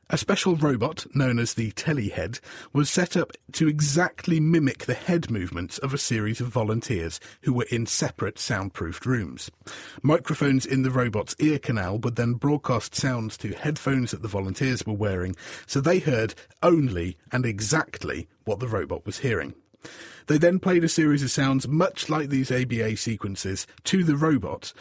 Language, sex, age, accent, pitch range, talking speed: English, male, 40-59, British, 110-150 Hz, 170 wpm